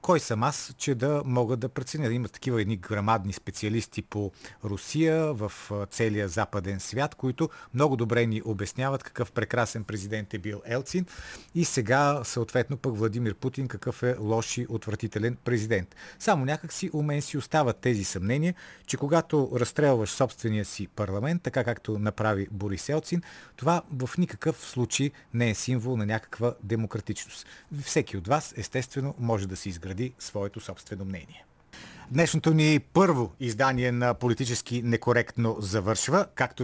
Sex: male